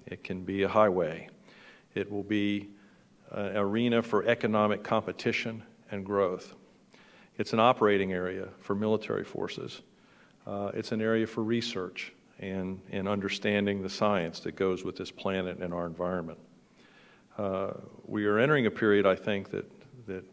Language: English